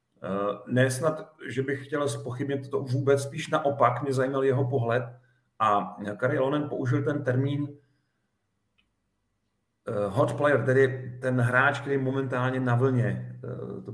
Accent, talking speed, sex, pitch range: native, 125 wpm, male, 125-145 Hz